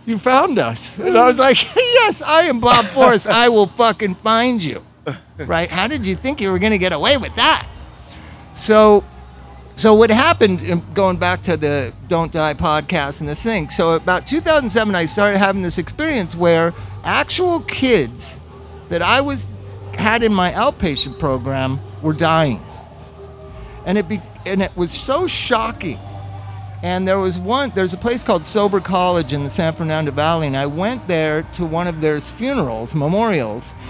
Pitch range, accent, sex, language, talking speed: 150-225 Hz, American, male, English, 170 wpm